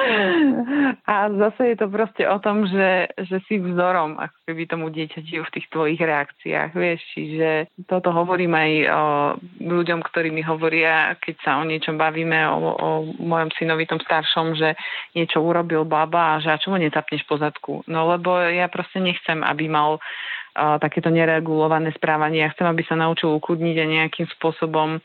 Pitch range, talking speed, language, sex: 155-170 Hz, 165 wpm, Slovak, female